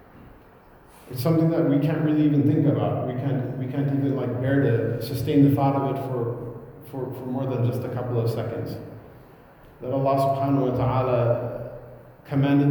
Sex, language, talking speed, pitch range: male, English, 180 wpm, 120-145 Hz